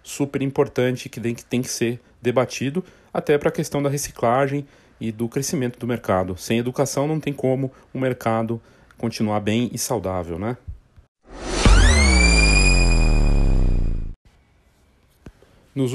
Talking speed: 115 wpm